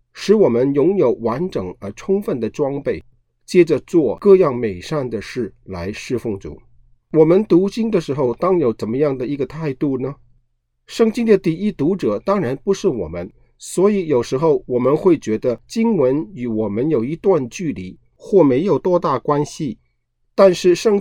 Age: 50-69